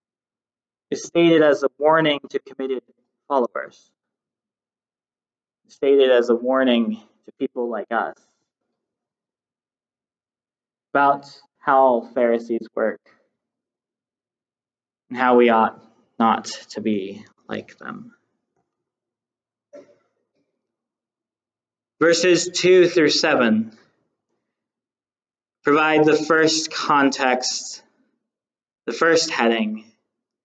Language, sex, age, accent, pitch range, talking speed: English, male, 20-39, American, 125-160 Hz, 80 wpm